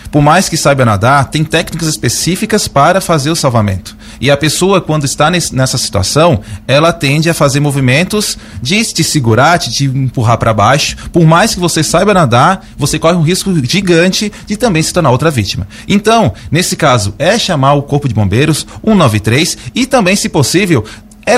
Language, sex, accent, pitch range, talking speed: Portuguese, male, Brazilian, 125-190 Hz, 180 wpm